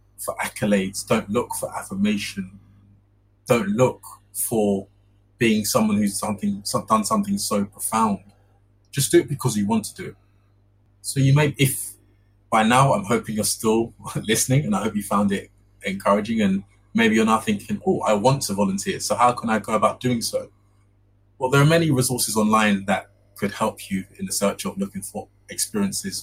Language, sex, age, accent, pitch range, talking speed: English, male, 20-39, British, 100-125 Hz, 180 wpm